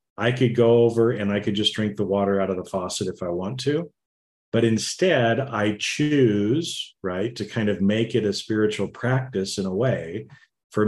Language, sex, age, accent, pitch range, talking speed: English, male, 40-59, American, 95-115 Hz, 200 wpm